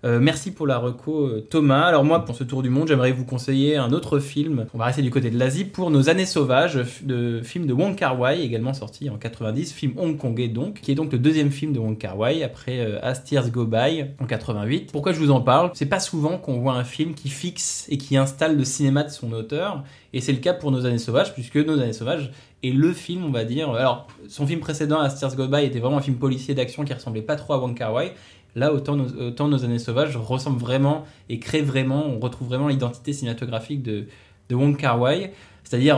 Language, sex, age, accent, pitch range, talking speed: French, male, 20-39, French, 120-145 Hz, 240 wpm